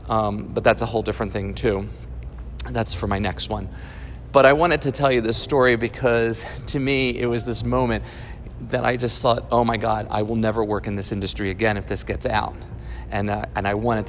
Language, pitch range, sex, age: English, 95-120 Hz, male, 30-49